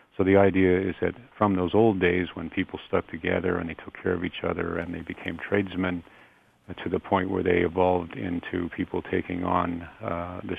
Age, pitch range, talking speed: 50-69, 90-95 Hz, 205 wpm